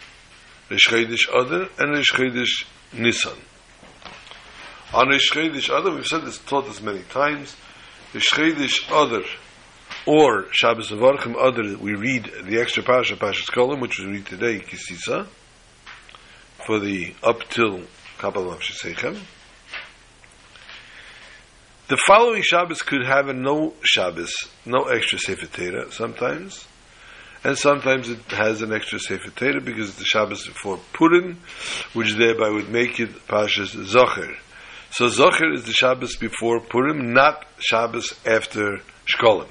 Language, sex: English, male